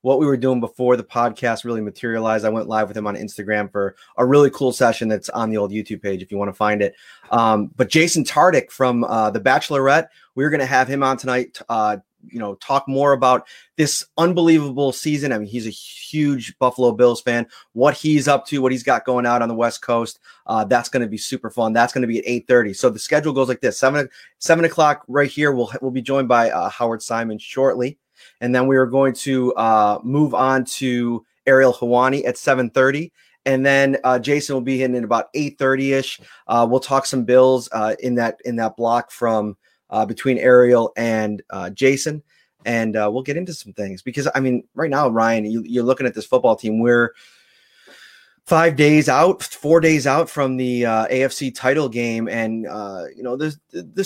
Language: English